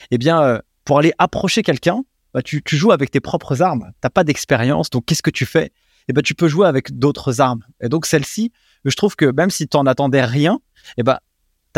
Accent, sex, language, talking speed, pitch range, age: French, male, French, 235 wpm, 130-160 Hz, 20-39